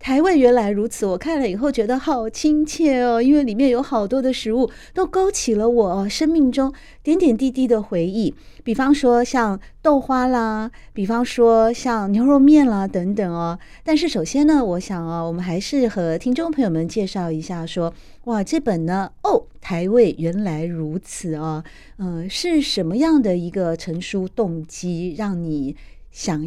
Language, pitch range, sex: Chinese, 180-260 Hz, female